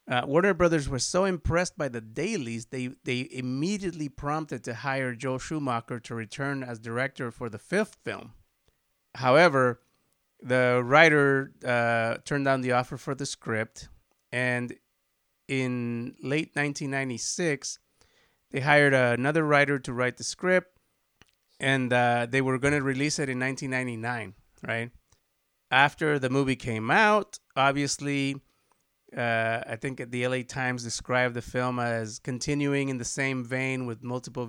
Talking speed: 145 wpm